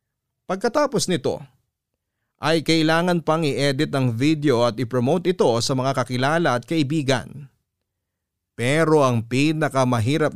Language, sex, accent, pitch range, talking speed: Filipino, male, native, 120-150 Hz, 110 wpm